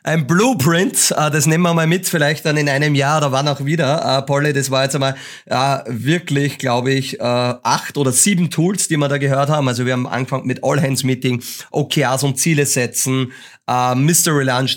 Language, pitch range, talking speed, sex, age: German, 130-160 Hz, 180 wpm, male, 30-49